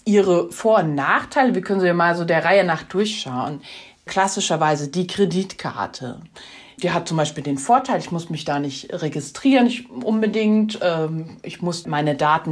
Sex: female